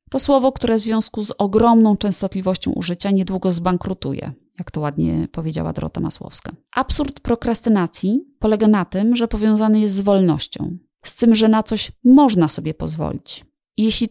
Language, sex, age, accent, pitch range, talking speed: Polish, female, 30-49, native, 180-235 Hz, 155 wpm